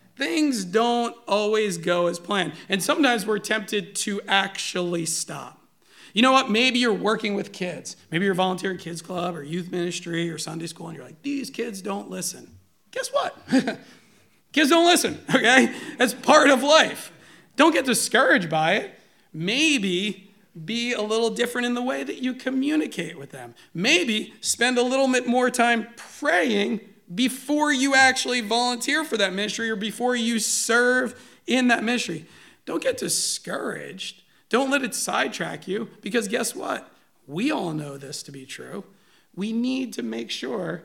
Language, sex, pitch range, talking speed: English, male, 180-245 Hz, 165 wpm